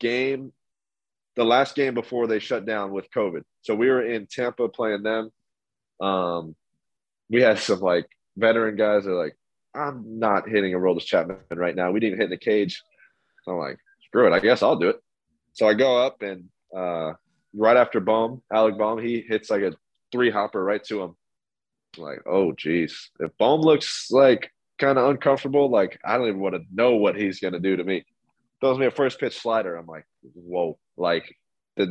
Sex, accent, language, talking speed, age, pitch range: male, American, English, 195 wpm, 20-39, 95-135 Hz